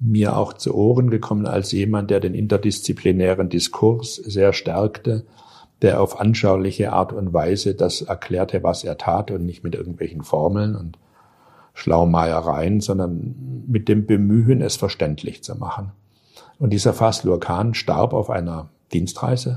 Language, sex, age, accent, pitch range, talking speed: German, male, 60-79, German, 90-125 Hz, 145 wpm